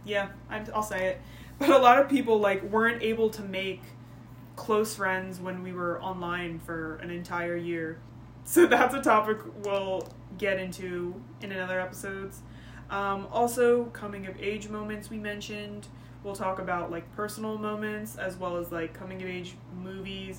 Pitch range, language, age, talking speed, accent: 170-215 Hz, English, 20-39, 170 wpm, American